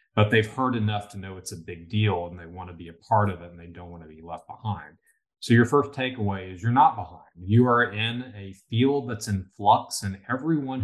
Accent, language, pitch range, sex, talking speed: American, English, 100-125 Hz, male, 240 wpm